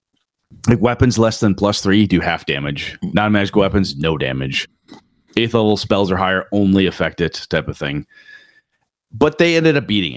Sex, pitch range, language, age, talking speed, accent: male, 95-150 Hz, English, 30-49, 170 wpm, American